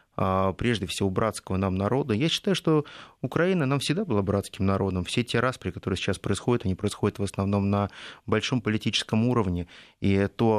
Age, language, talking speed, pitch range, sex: 30-49, Russian, 170 wpm, 100-120 Hz, male